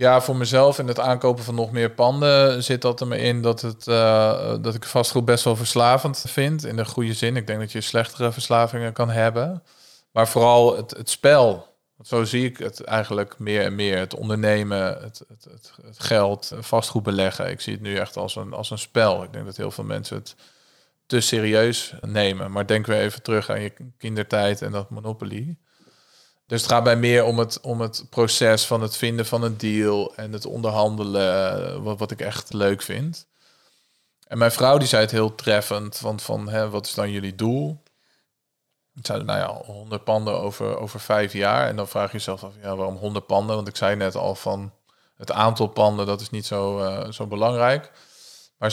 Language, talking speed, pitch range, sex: Dutch, 205 wpm, 105-120 Hz, male